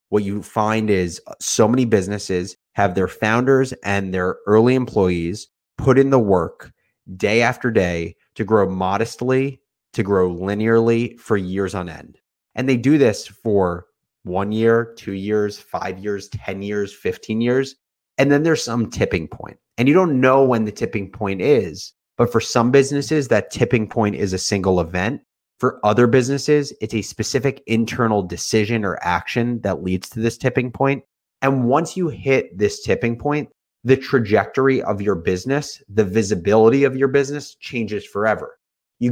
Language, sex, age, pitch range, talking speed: English, male, 30-49, 100-130 Hz, 165 wpm